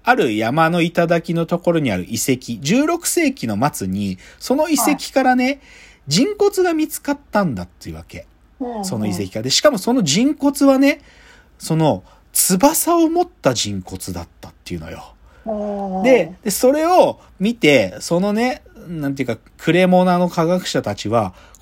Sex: male